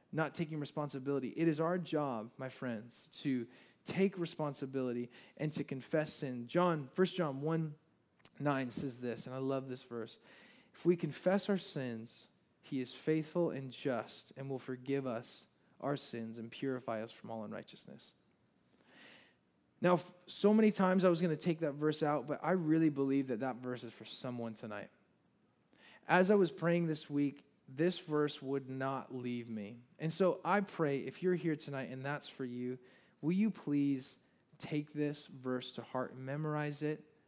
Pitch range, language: 130-170 Hz, English